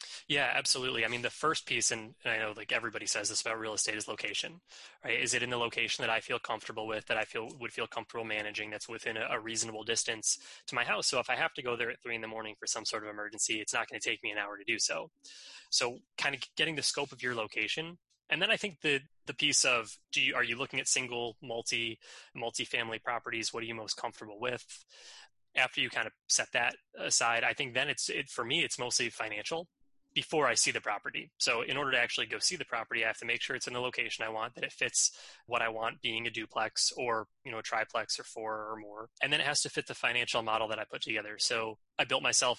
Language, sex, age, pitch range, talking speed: English, male, 20-39, 110-130 Hz, 260 wpm